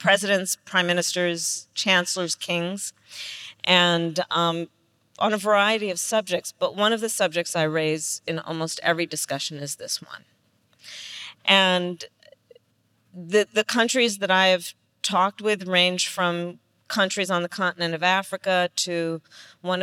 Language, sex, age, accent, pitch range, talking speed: English, female, 40-59, American, 155-180 Hz, 135 wpm